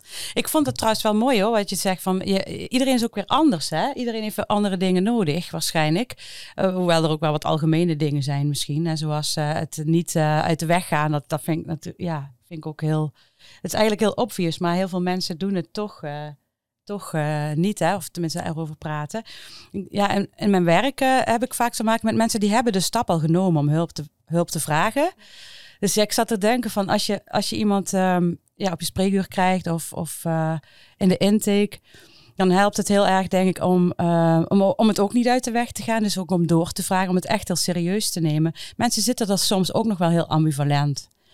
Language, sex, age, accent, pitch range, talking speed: Dutch, female, 40-59, Dutch, 160-200 Hz, 240 wpm